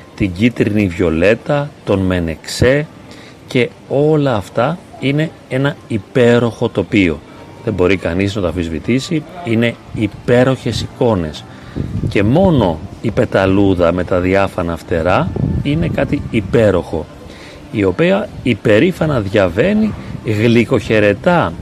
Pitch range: 100-145 Hz